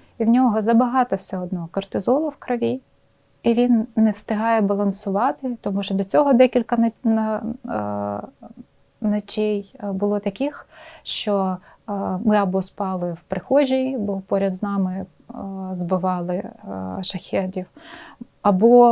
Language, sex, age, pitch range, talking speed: Ukrainian, female, 20-39, 195-240 Hz, 110 wpm